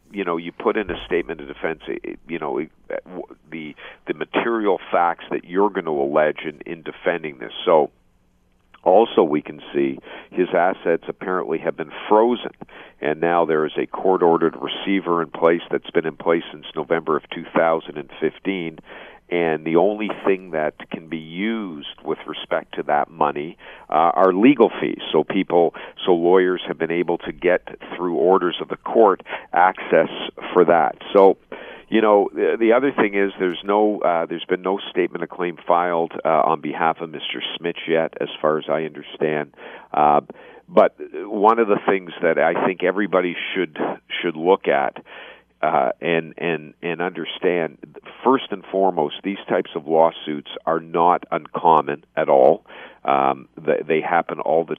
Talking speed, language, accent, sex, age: 165 wpm, English, American, male, 50-69